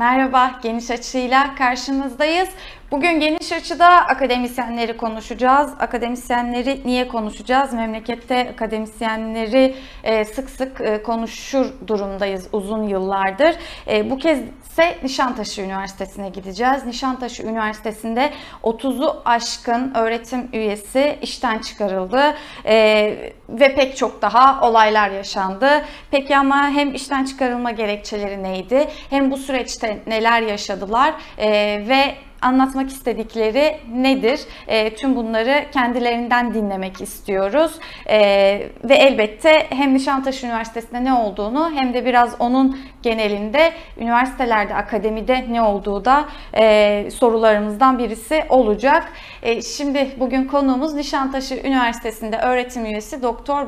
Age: 30-49